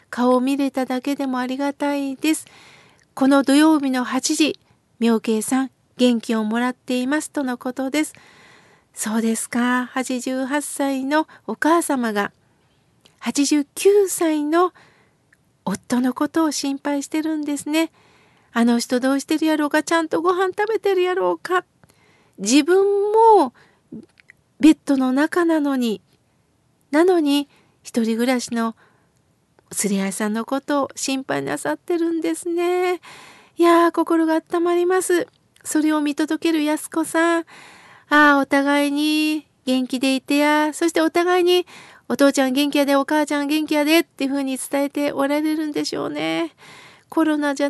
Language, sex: Japanese, female